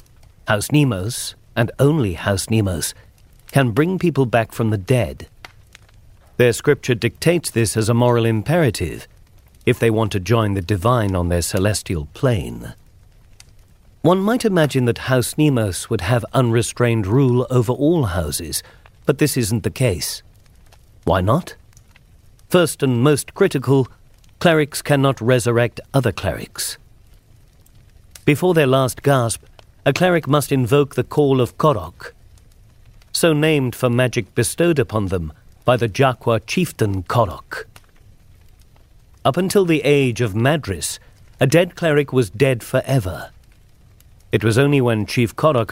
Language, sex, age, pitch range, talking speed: English, male, 50-69, 105-135 Hz, 135 wpm